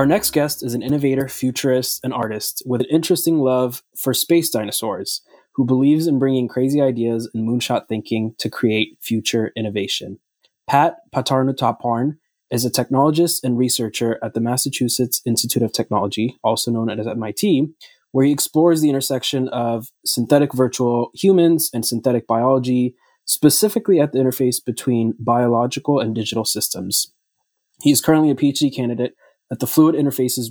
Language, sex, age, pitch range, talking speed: English, male, 20-39, 115-140 Hz, 150 wpm